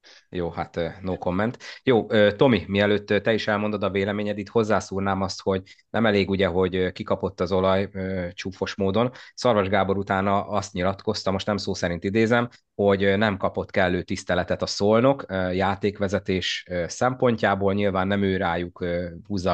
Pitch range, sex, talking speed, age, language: 90-105 Hz, male, 150 wpm, 30-49, Hungarian